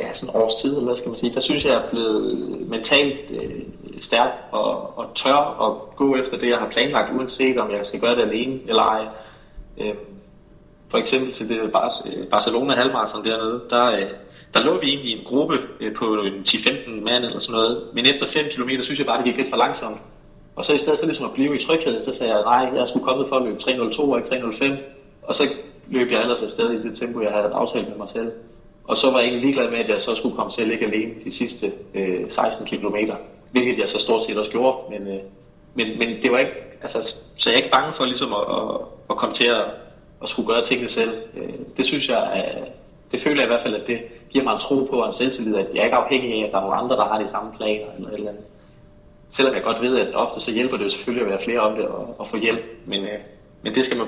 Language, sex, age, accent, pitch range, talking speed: Danish, male, 20-39, native, 110-130 Hz, 260 wpm